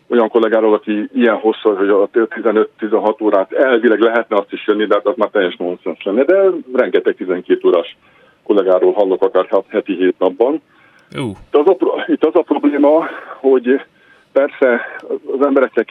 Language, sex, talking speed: Hungarian, male, 145 wpm